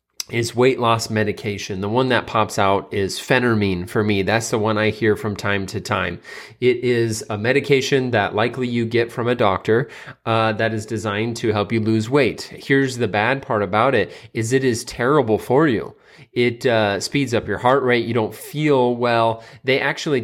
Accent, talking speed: American, 200 wpm